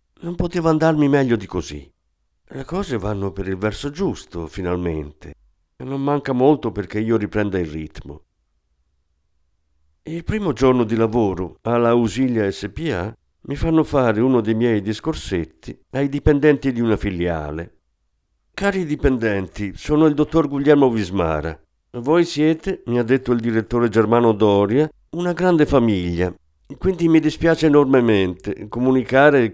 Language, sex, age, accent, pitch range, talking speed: Italian, male, 50-69, native, 95-140 Hz, 135 wpm